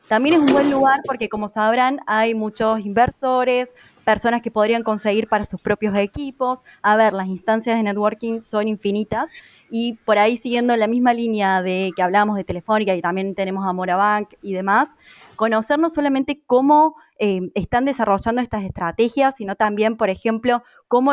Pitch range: 205-250 Hz